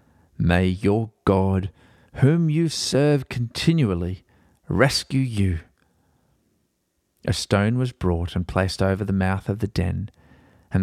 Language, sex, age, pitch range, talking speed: English, male, 40-59, 95-130 Hz, 120 wpm